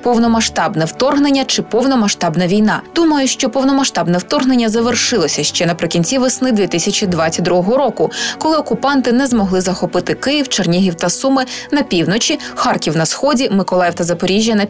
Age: 20-39